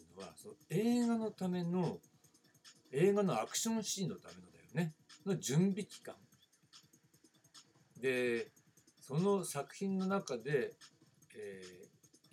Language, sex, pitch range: Japanese, male, 130-195 Hz